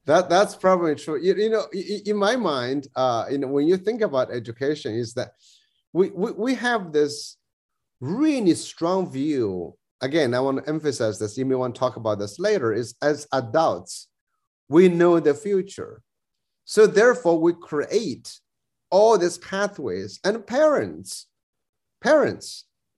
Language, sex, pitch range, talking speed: English, male, 140-210 Hz, 155 wpm